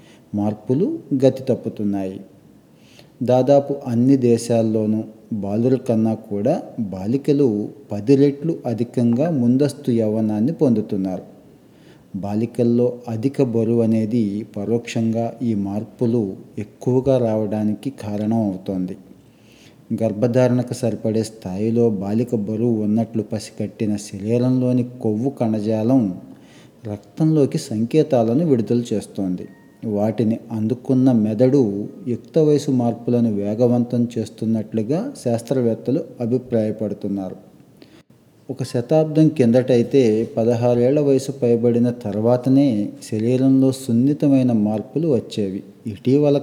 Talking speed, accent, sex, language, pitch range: 80 wpm, native, male, Telugu, 110-125 Hz